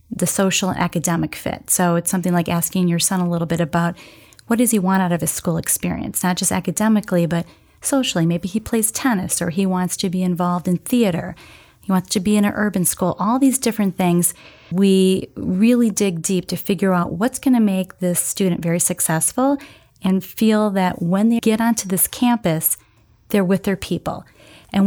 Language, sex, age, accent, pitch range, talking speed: English, female, 30-49, American, 175-205 Hz, 200 wpm